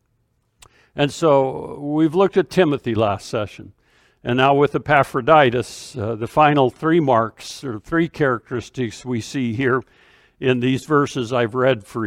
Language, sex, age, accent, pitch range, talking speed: English, male, 60-79, American, 120-150 Hz, 145 wpm